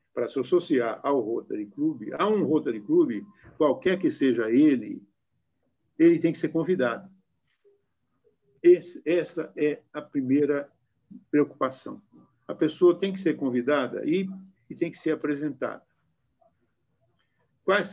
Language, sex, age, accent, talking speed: Portuguese, male, 60-79, Brazilian, 125 wpm